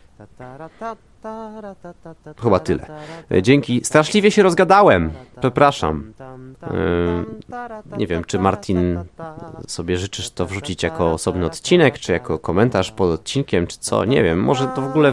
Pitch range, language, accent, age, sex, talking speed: 95-150 Hz, Polish, native, 30-49, male, 125 wpm